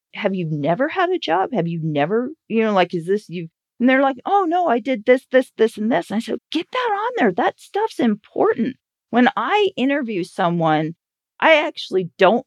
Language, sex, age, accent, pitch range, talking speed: English, female, 40-59, American, 170-230 Hz, 210 wpm